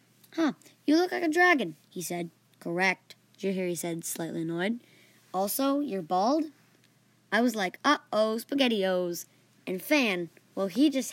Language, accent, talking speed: English, American, 140 wpm